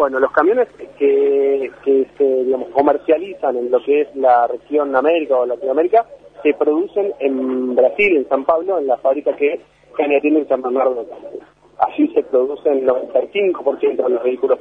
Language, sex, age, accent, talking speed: Spanish, male, 30-49, Argentinian, 180 wpm